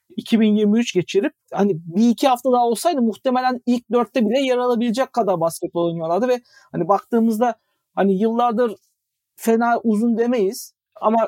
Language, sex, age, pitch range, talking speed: Turkish, male, 50-69, 195-240 Hz, 140 wpm